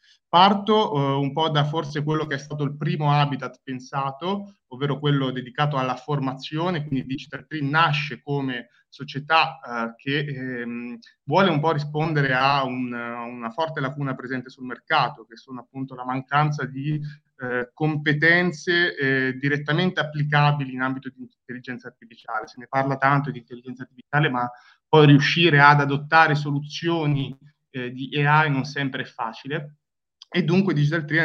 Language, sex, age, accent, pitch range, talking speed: Italian, male, 30-49, native, 125-150 Hz, 155 wpm